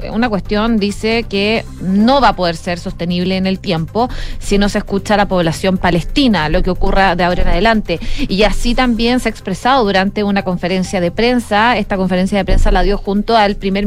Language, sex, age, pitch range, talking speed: Spanish, female, 30-49, 190-225 Hz, 210 wpm